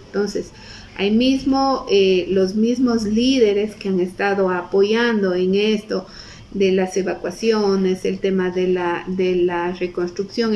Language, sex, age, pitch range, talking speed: Hungarian, female, 50-69, 190-235 Hz, 130 wpm